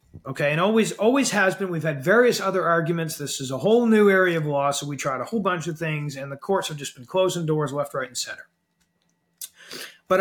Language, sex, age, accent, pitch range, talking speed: English, male, 40-59, American, 160-215 Hz, 235 wpm